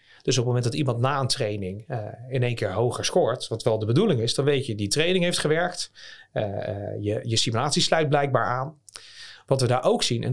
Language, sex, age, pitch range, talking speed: Dutch, male, 40-59, 110-140 Hz, 230 wpm